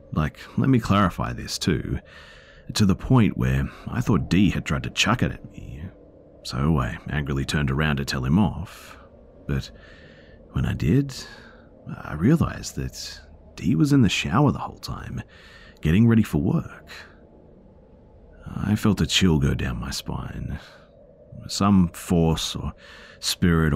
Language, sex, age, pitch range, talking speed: English, male, 40-59, 70-85 Hz, 150 wpm